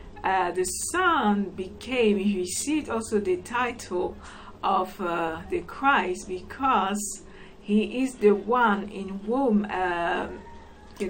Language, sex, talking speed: English, female, 120 wpm